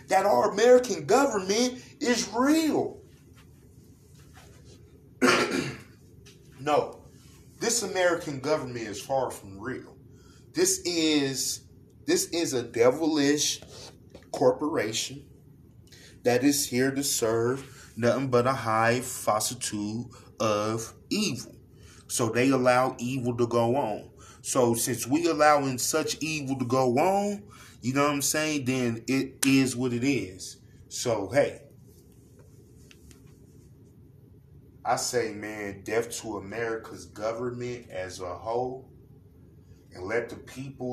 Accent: American